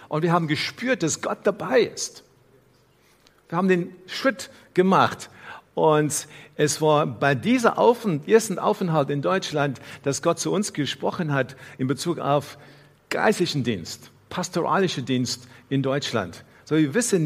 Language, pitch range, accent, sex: German, 140-185 Hz, German, male